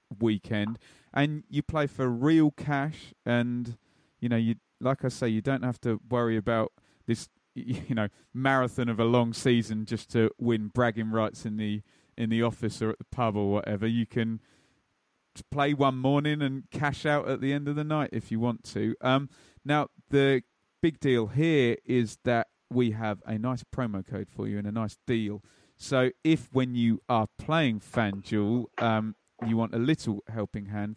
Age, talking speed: 30-49, 185 wpm